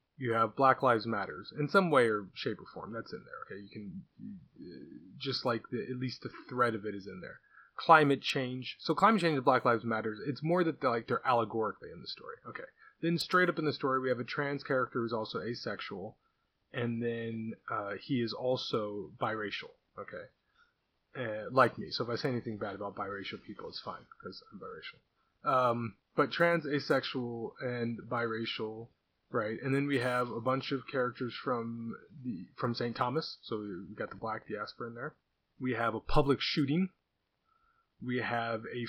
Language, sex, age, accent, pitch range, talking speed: English, male, 20-39, American, 115-145 Hz, 190 wpm